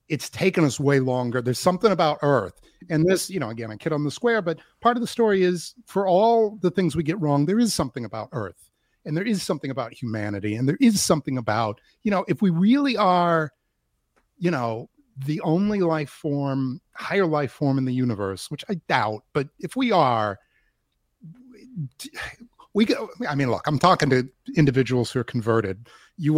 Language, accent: English, American